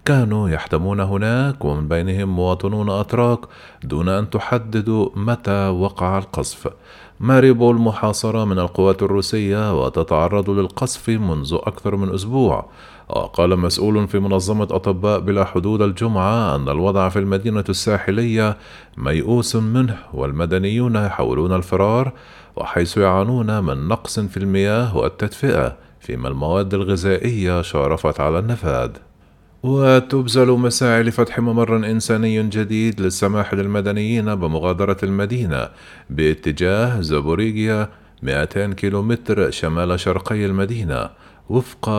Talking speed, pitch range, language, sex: 105 wpm, 95-110 Hz, Arabic, male